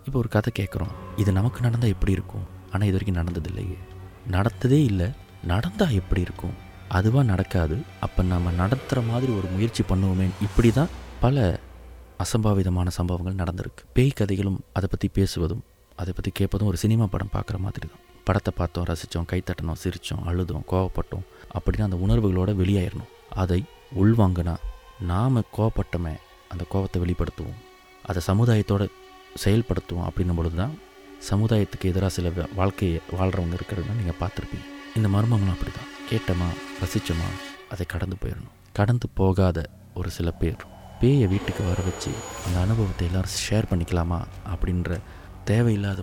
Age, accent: 20-39, native